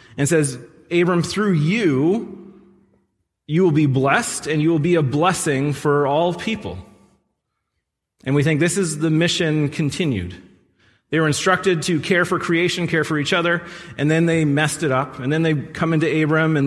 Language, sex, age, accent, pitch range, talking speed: English, male, 30-49, American, 125-160 Hz, 180 wpm